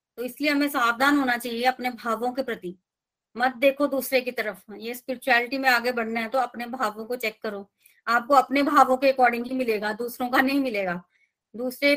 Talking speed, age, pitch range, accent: 195 wpm, 20-39, 220-275 Hz, native